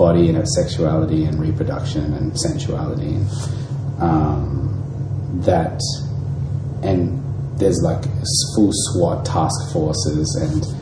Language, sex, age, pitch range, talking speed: English, male, 30-49, 105-135 Hz, 110 wpm